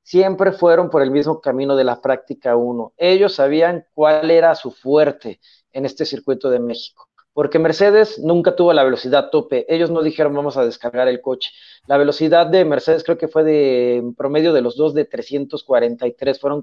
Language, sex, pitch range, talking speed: Spanish, male, 135-170 Hz, 190 wpm